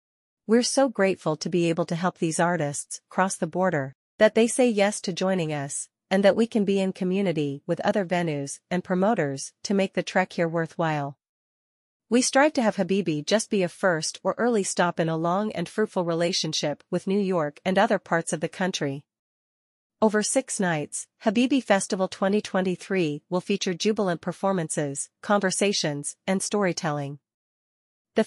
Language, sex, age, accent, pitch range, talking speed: English, female, 40-59, American, 165-200 Hz, 170 wpm